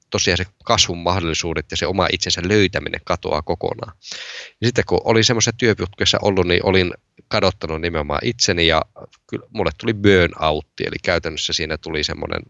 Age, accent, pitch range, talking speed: 20-39, native, 80-95 Hz, 160 wpm